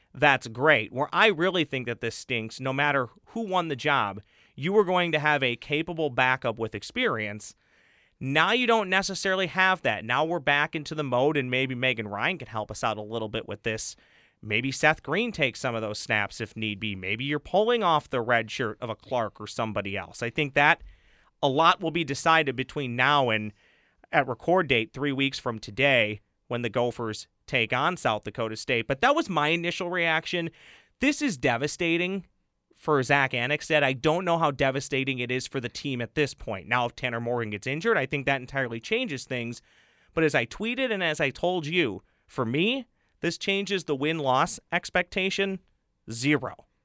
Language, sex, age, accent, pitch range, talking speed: English, male, 30-49, American, 115-165 Hz, 200 wpm